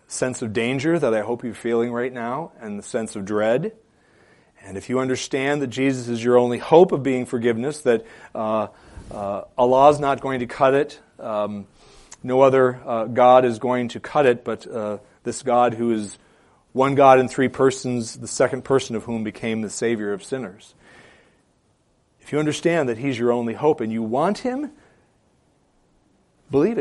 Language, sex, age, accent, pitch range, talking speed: English, male, 40-59, American, 115-140 Hz, 180 wpm